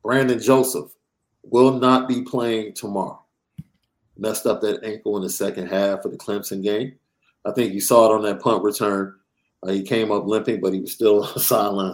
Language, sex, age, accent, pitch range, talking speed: English, male, 50-69, American, 105-135 Hz, 190 wpm